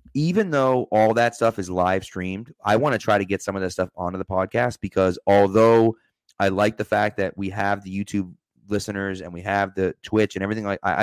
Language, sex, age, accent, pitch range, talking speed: English, male, 30-49, American, 95-115 Hz, 225 wpm